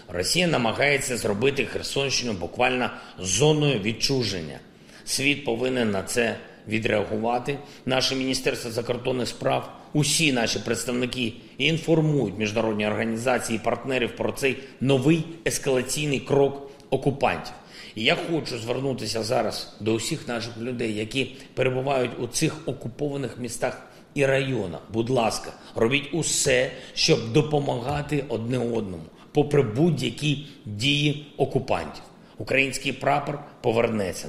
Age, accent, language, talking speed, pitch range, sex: 40-59, native, Ukrainian, 110 wpm, 115-145 Hz, male